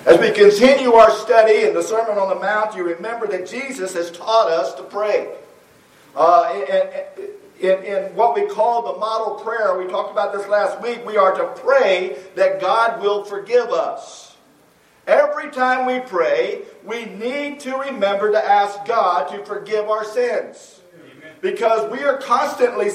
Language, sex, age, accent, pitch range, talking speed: English, male, 50-69, American, 195-275 Hz, 165 wpm